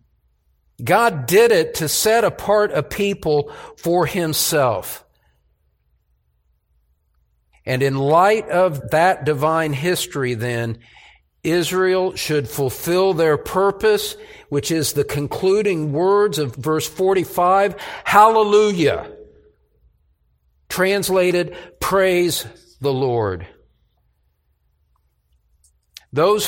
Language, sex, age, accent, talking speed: English, male, 50-69, American, 85 wpm